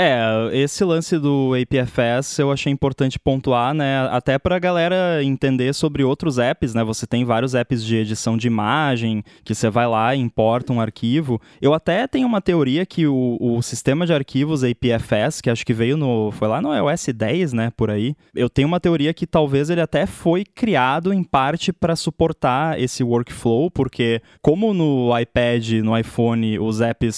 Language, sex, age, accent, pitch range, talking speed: Portuguese, male, 10-29, Brazilian, 115-150 Hz, 185 wpm